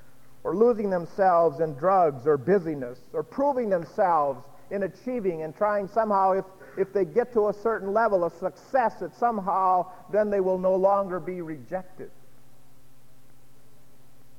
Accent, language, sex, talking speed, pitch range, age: American, English, male, 140 wpm, 130-185 Hz, 50-69